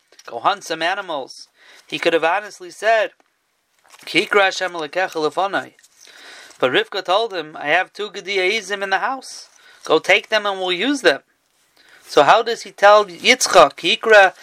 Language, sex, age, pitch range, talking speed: English, male, 30-49, 175-220 Hz, 150 wpm